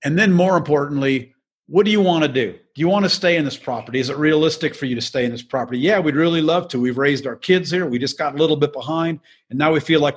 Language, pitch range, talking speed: English, 130-160 Hz, 285 wpm